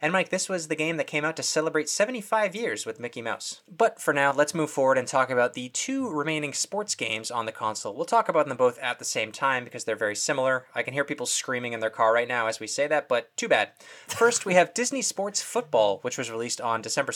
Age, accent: 20-39, American